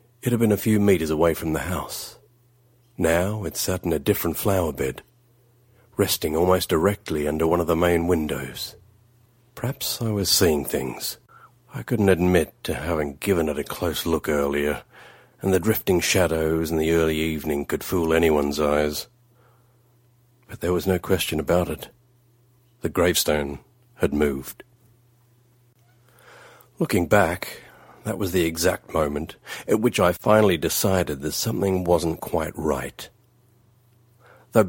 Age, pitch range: 40-59, 80-120 Hz